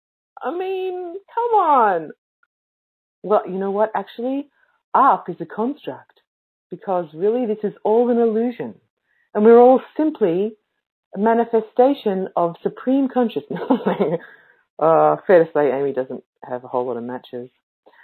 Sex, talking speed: female, 135 wpm